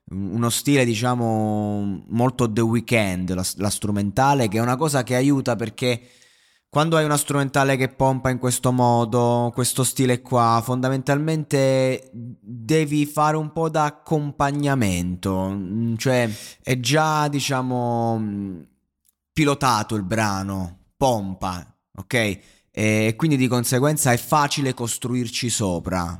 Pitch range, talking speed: 105-130 Hz, 115 wpm